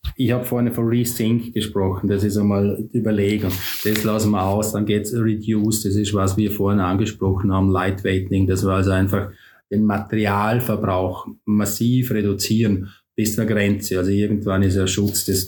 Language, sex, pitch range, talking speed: German, male, 95-110 Hz, 170 wpm